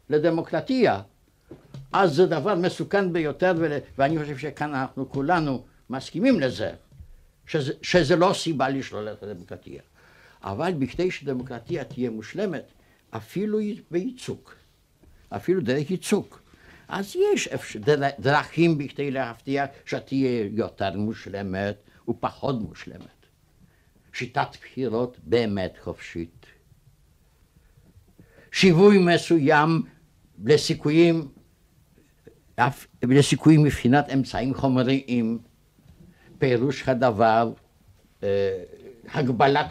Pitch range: 115-170 Hz